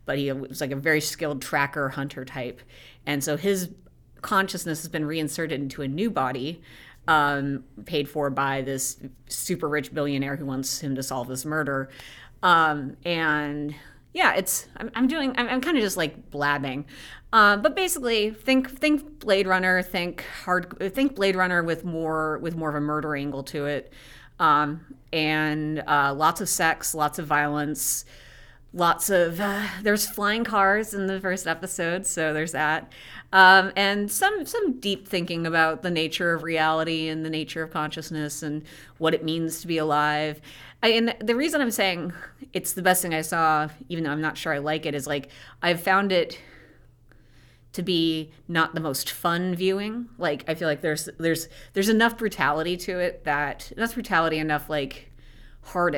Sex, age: female, 30-49